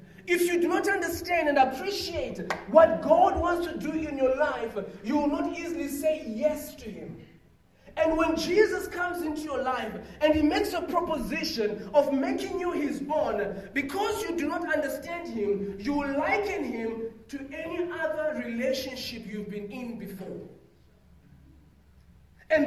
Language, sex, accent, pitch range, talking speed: English, male, South African, 240-315 Hz, 155 wpm